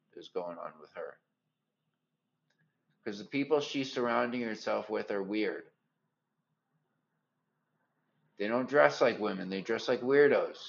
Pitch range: 120-145 Hz